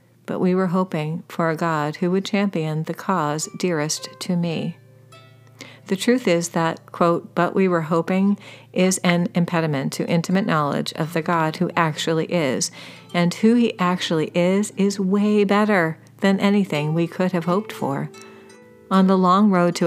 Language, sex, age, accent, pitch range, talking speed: English, female, 40-59, American, 160-195 Hz, 170 wpm